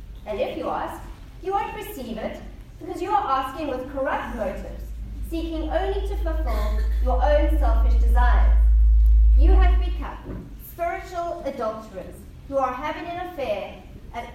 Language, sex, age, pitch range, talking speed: English, female, 40-59, 245-320 Hz, 140 wpm